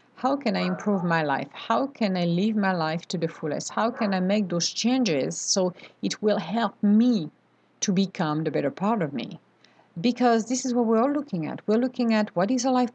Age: 50-69